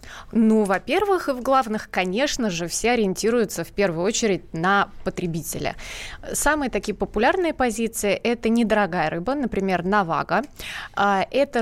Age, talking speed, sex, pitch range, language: 20-39, 130 wpm, female, 185-235 Hz, Russian